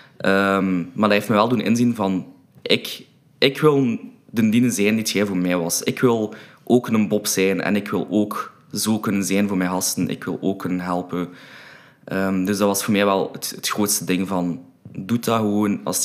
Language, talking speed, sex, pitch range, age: Dutch, 200 wpm, male, 90-105 Hz, 20-39